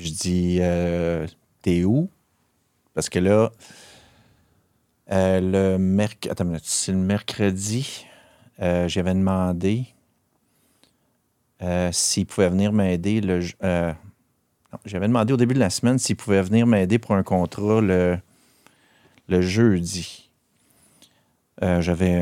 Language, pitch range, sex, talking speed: French, 90-105 Hz, male, 120 wpm